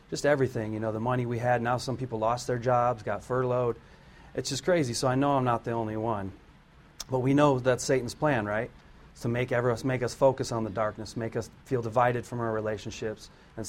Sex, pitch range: male, 110-130 Hz